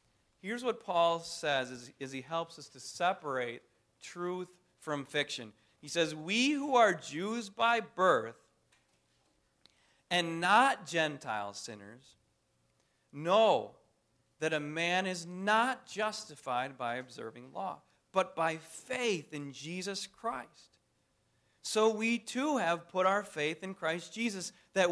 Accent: American